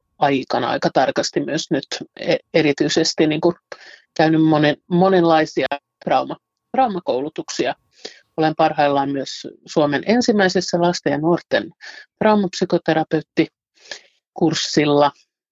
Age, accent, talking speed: 50-69, native, 80 wpm